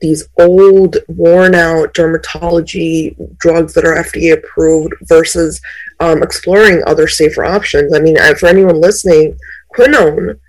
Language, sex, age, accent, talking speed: English, female, 30-49, American, 115 wpm